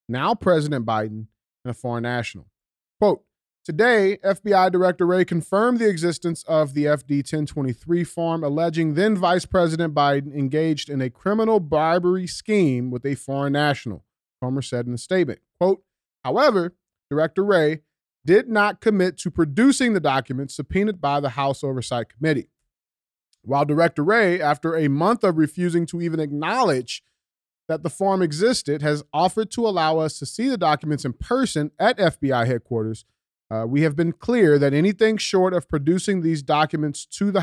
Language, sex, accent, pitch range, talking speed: English, male, American, 125-170 Hz, 160 wpm